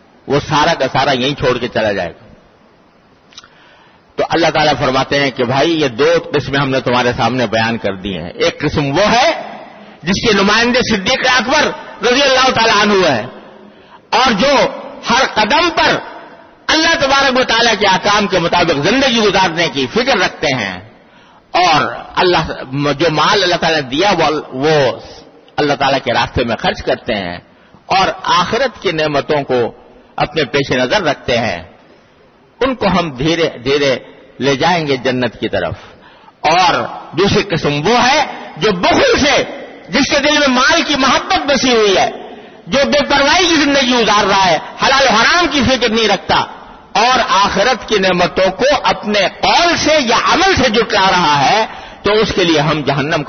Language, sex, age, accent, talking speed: English, male, 50-69, Indian, 135 wpm